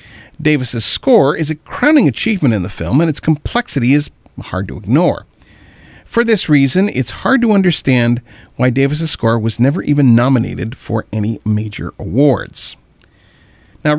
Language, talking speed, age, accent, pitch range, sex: English, 150 wpm, 40-59, American, 115-150 Hz, male